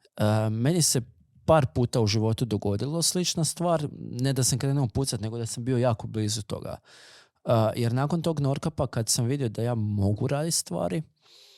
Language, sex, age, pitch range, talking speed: Croatian, male, 20-39, 110-140 Hz, 170 wpm